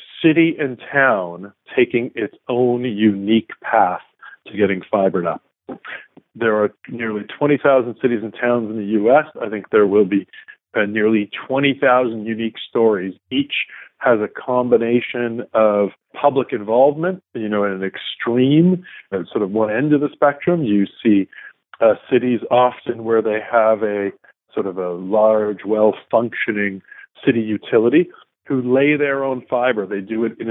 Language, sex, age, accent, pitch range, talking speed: English, male, 40-59, American, 105-125 Hz, 150 wpm